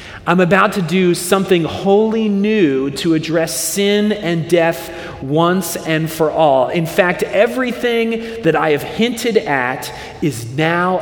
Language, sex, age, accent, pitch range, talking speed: English, male, 40-59, American, 115-170 Hz, 140 wpm